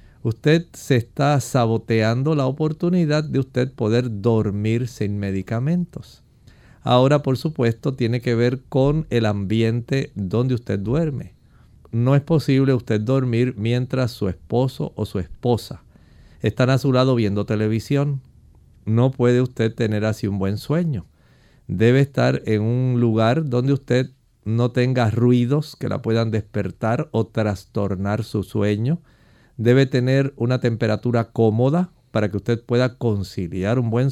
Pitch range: 110-130 Hz